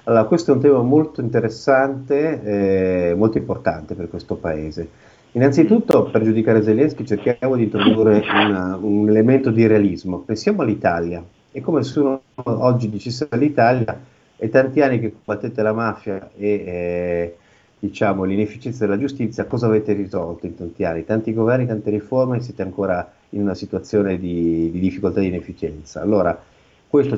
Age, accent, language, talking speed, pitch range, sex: 50-69, native, Italian, 155 wpm, 90-115 Hz, male